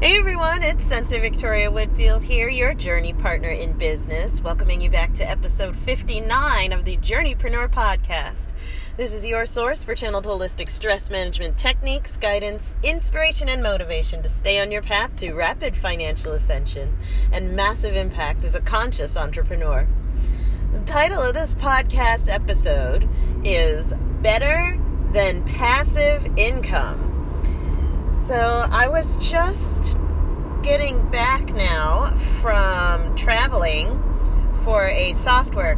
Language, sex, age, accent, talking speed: English, female, 40-59, American, 125 wpm